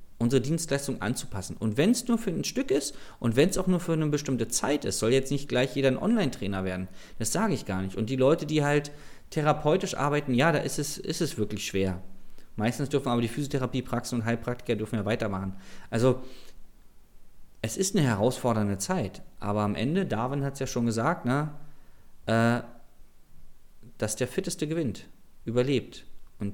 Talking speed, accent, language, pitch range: 180 wpm, German, German, 105-145 Hz